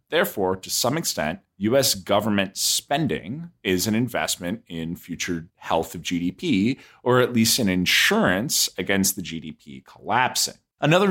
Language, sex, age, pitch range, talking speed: English, male, 30-49, 105-160 Hz, 135 wpm